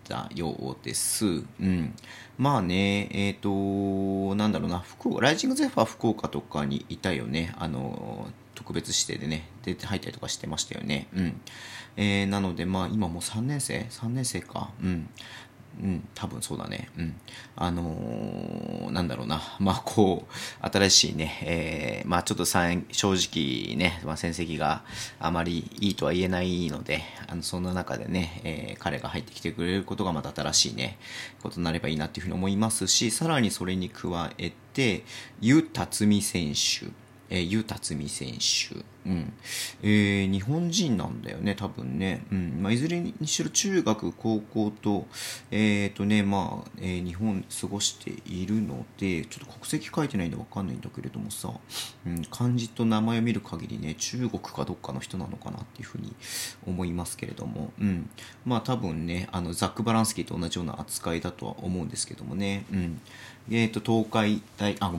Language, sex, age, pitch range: Japanese, male, 40-59, 90-110 Hz